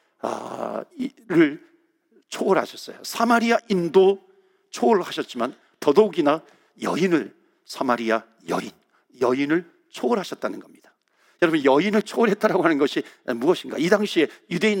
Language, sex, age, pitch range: Korean, male, 50-69, 160-240 Hz